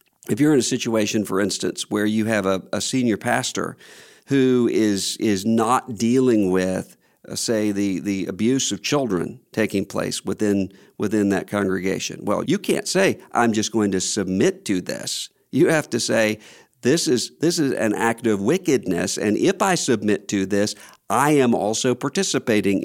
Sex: male